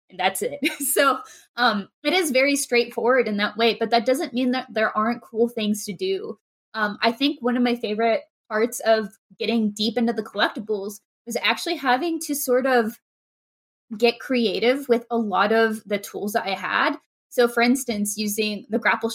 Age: 20-39